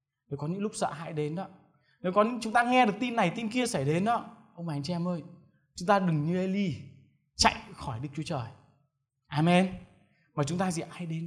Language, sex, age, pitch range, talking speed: Vietnamese, male, 20-39, 140-195 Hz, 240 wpm